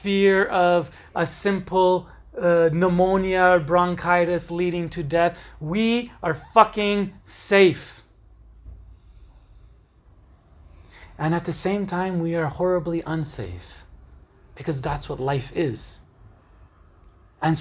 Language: English